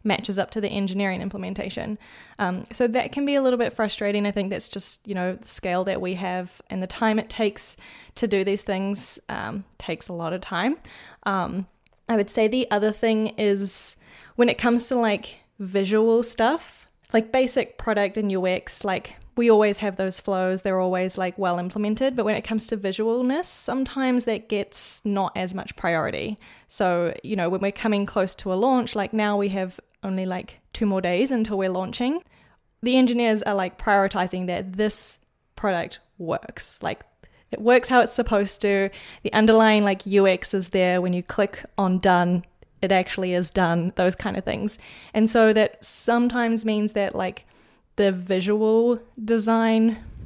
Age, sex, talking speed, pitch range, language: 10-29, female, 180 wpm, 190-225 Hz, English